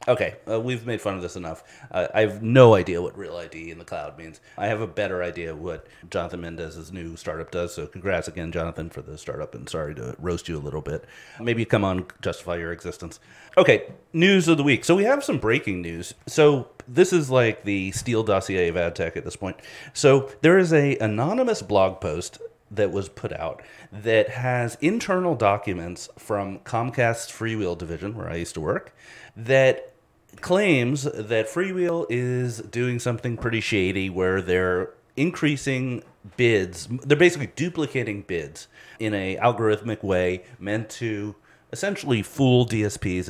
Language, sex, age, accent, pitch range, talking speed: English, male, 30-49, American, 95-125 Hz, 175 wpm